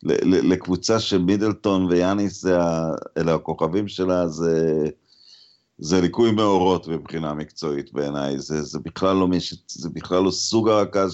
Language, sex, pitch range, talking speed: Hebrew, male, 85-115 Hz, 120 wpm